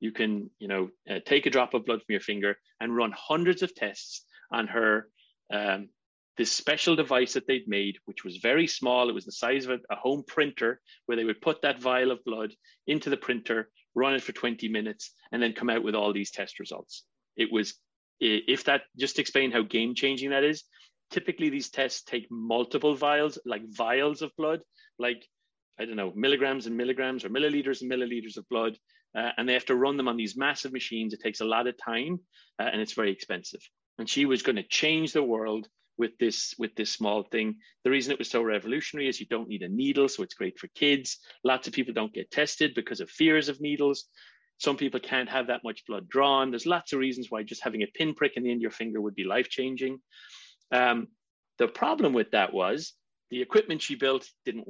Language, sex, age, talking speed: English, male, 30-49, 220 wpm